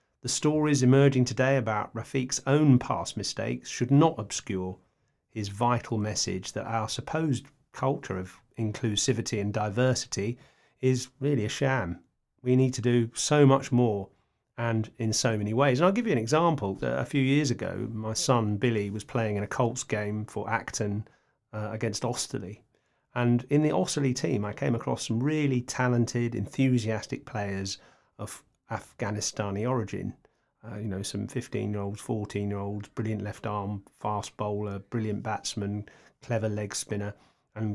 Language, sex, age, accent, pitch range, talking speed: English, male, 40-59, British, 105-130 Hz, 160 wpm